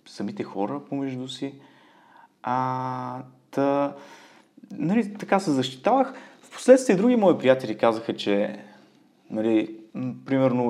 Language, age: Bulgarian, 20-39